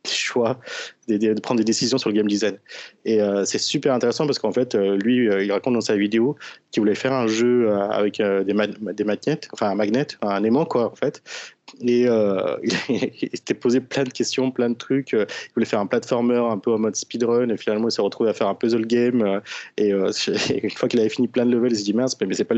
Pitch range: 105-120 Hz